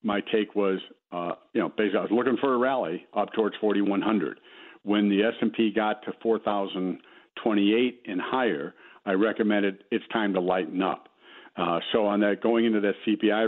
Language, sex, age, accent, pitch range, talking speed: English, male, 60-79, American, 100-115 Hz, 180 wpm